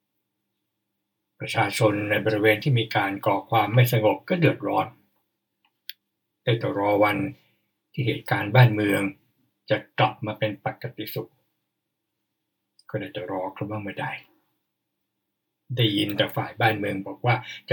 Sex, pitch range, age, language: male, 105-135 Hz, 60-79, Thai